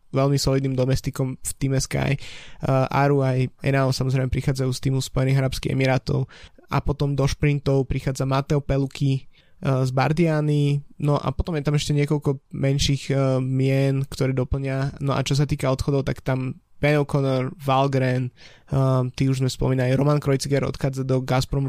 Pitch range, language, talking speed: 130-140 Hz, Slovak, 165 wpm